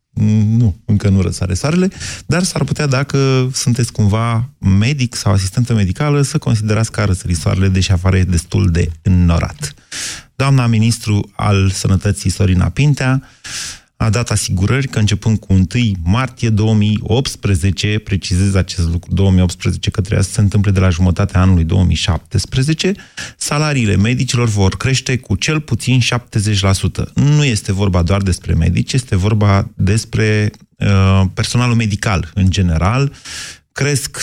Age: 30-49